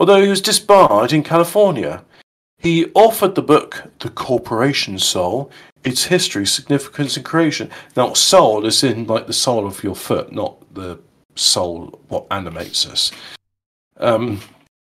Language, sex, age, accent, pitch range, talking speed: English, male, 40-59, British, 110-170 Hz, 140 wpm